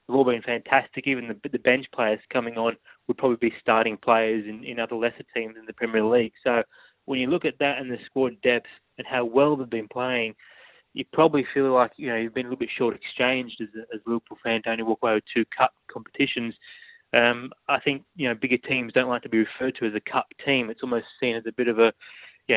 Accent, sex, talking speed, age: Australian, male, 250 wpm, 20-39